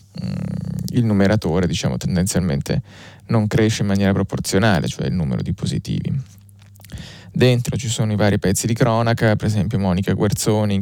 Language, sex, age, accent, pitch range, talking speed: Italian, male, 20-39, native, 105-130 Hz, 145 wpm